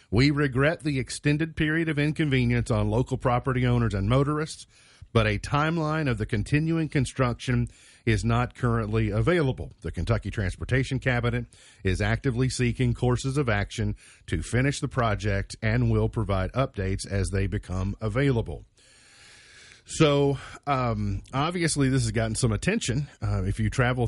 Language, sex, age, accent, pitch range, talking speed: English, male, 40-59, American, 100-130 Hz, 145 wpm